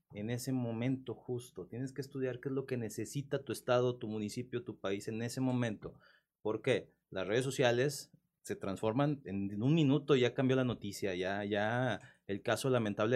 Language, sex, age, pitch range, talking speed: Spanish, male, 30-49, 105-130 Hz, 180 wpm